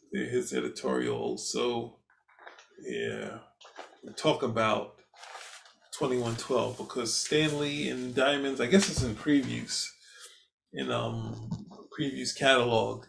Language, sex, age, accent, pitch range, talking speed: English, male, 20-39, American, 110-150 Hz, 90 wpm